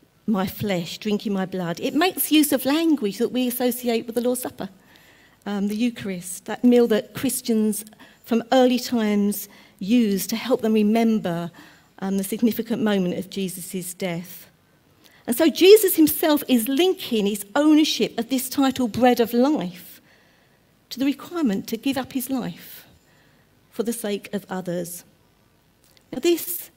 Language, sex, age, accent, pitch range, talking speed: English, female, 50-69, British, 200-275 Hz, 150 wpm